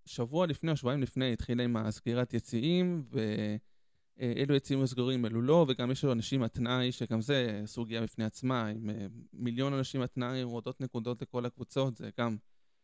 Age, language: 20-39, Hebrew